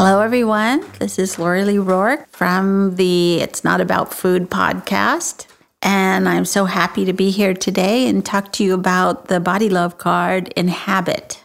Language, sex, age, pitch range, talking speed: English, female, 50-69, 180-205 Hz, 170 wpm